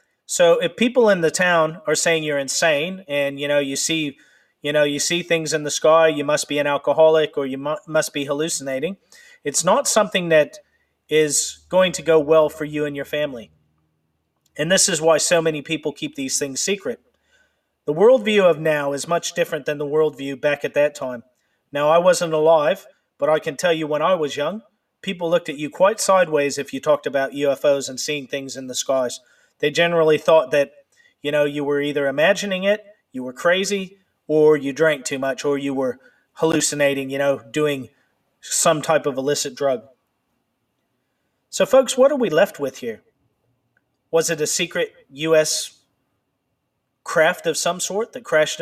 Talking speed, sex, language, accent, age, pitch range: 190 wpm, male, English, American, 40-59, 140-175 Hz